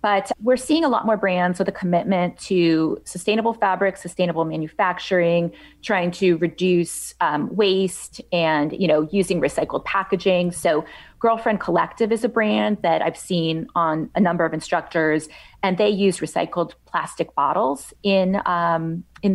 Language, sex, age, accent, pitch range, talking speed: English, female, 30-49, American, 170-200 Hz, 150 wpm